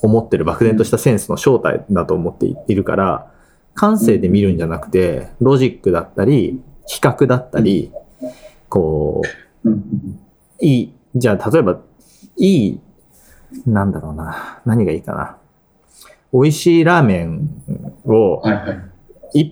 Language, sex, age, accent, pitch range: Japanese, male, 30-49, native, 95-155 Hz